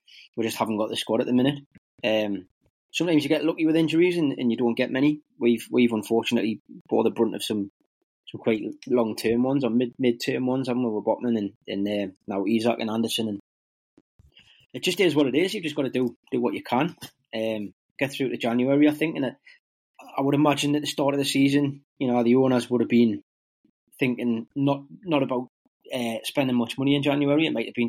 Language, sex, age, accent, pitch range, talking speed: English, male, 20-39, British, 110-140 Hz, 230 wpm